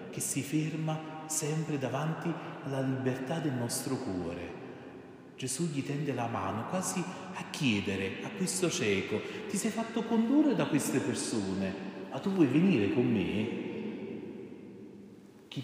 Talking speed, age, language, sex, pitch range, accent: 135 wpm, 40-59, Italian, male, 115-140 Hz, native